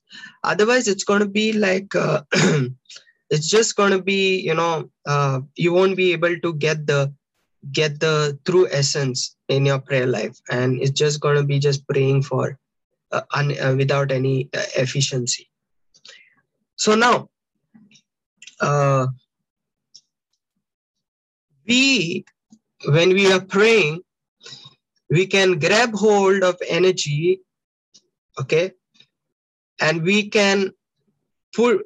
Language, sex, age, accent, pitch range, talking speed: English, male, 20-39, Indian, 150-205 Hz, 120 wpm